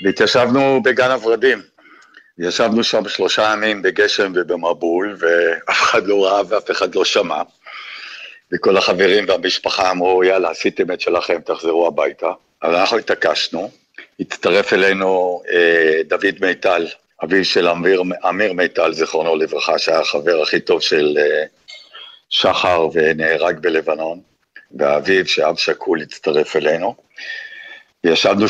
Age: 60-79